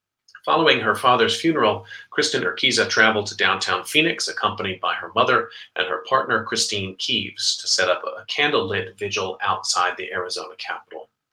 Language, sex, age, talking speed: English, male, 40-59, 155 wpm